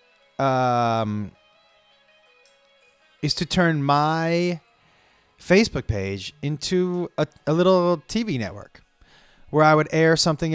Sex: male